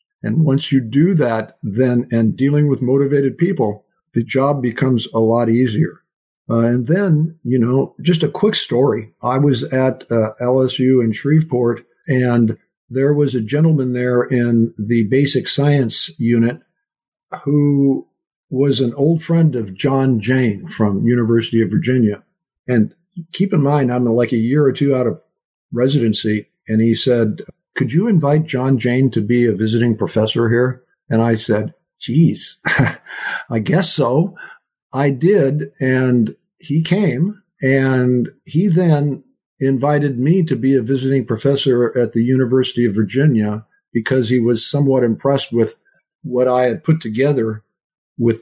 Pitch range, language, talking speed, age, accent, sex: 115-145 Hz, English, 150 wpm, 50-69, American, male